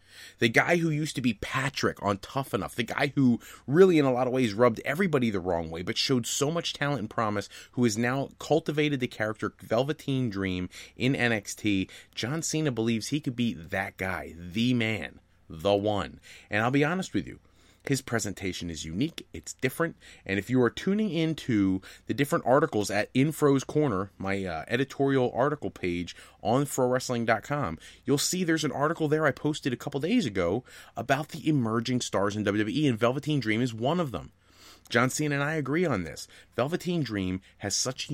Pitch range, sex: 95-135 Hz, male